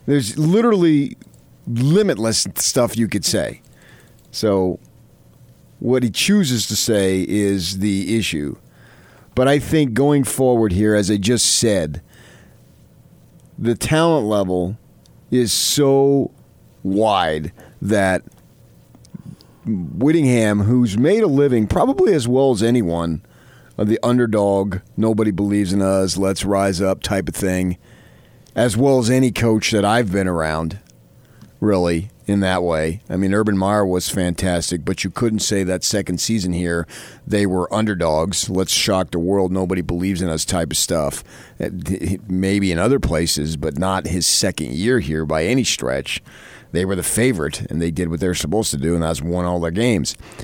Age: 40-59